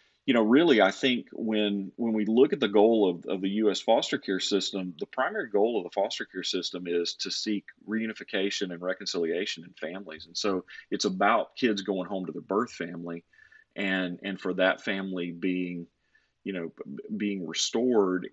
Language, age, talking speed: English, 40-59, 185 wpm